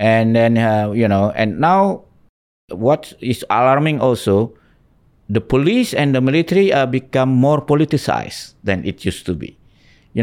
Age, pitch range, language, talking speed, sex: 50-69, 100-145 Hz, English, 160 wpm, male